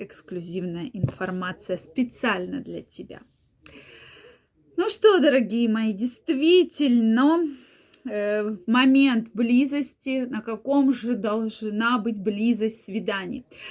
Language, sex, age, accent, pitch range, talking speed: Russian, female, 20-39, native, 225-300 Hz, 90 wpm